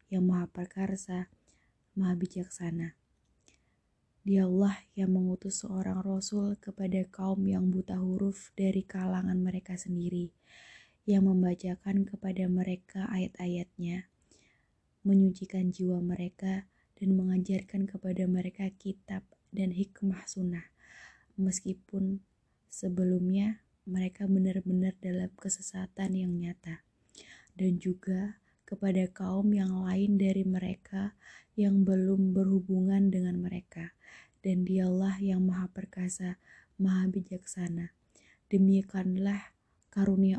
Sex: female